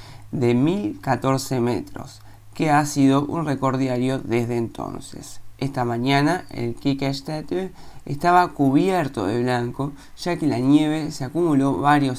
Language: Spanish